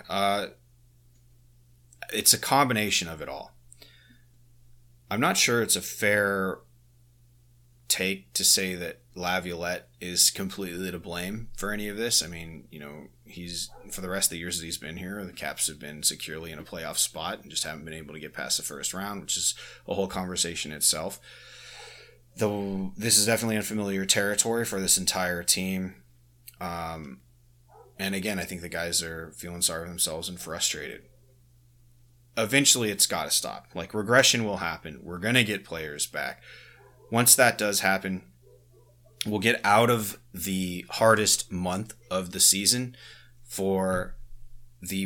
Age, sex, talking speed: 30-49, male, 165 wpm